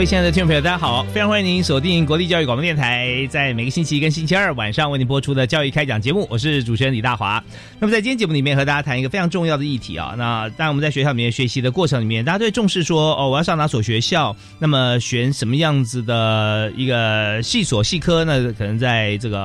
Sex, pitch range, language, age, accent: male, 115-155 Hz, Chinese, 30-49, native